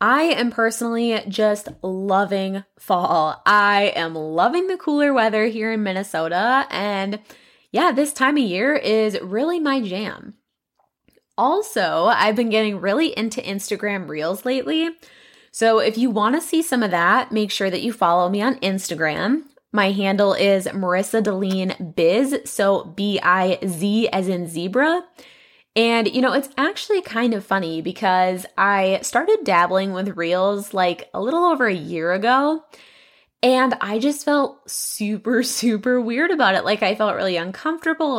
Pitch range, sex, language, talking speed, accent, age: 190-260 Hz, female, English, 155 wpm, American, 20-39